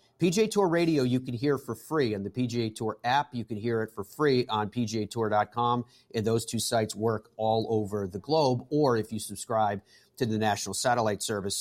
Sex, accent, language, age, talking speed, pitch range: male, American, English, 40-59, 200 wpm, 105-130 Hz